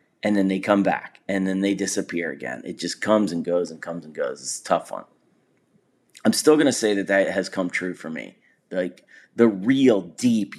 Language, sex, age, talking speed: English, male, 30-49, 220 wpm